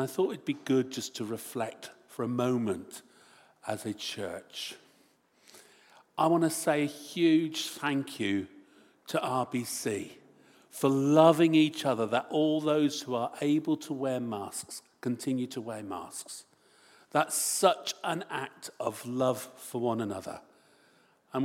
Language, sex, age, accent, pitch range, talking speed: English, male, 50-69, British, 120-160 Hz, 145 wpm